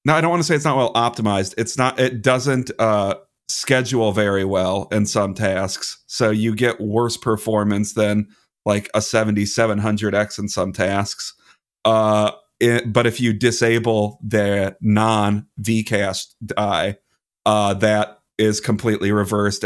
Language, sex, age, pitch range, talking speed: English, male, 30-49, 100-115 Hz, 140 wpm